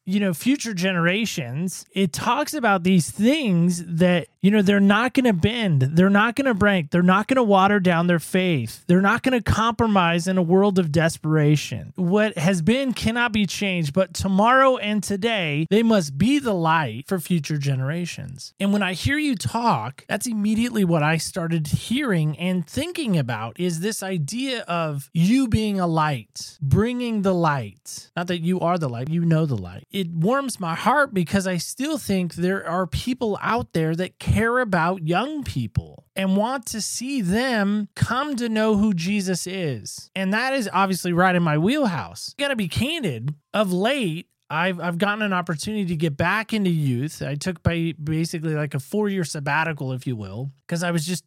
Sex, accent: male, American